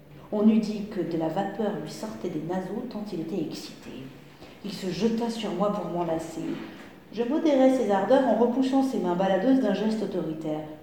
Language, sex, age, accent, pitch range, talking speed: French, female, 50-69, French, 170-240 Hz, 190 wpm